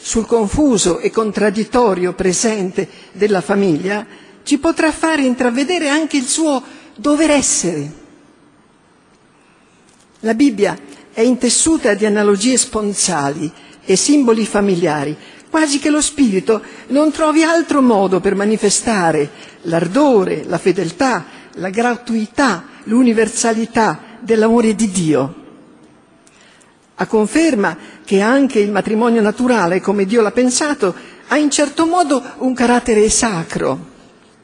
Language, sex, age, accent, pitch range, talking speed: Italian, female, 60-79, native, 195-290 Hz, 110 wpm